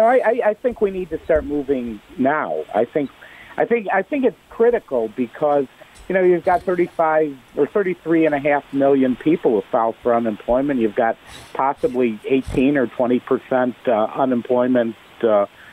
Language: English